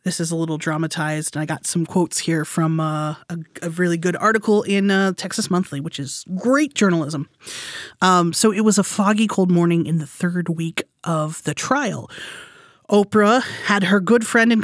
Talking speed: 195 wpm